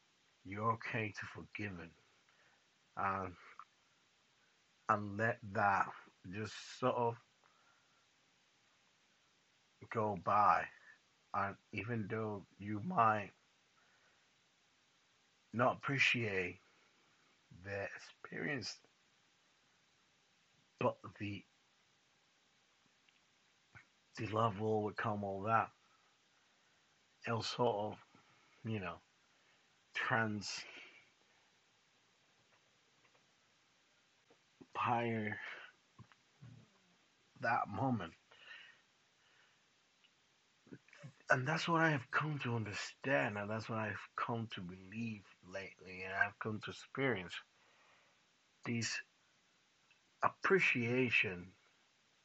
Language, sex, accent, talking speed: English, male, American, 70 wpm